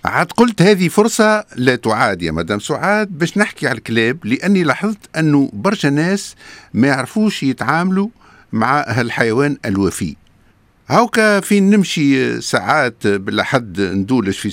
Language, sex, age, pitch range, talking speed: Arabic, male, 50-69, 105-165 Hz, 130 wpm